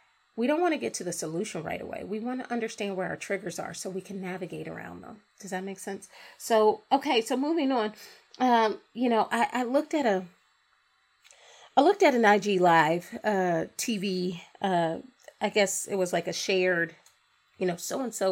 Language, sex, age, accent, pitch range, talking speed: English, female, 30-49, American, 190-225 Hz, 195 wpm